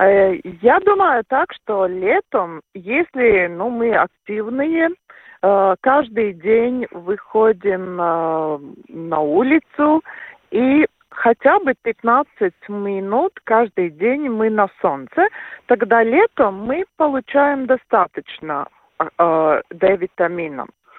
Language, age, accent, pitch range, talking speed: Russian, 50-69, native, 185-265 Hz, 85 wpm